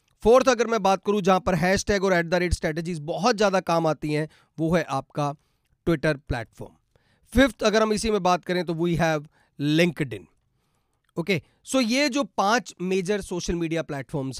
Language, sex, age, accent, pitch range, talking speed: Hindi, male, 30-49, native, 170-220 Hz, 185 wpm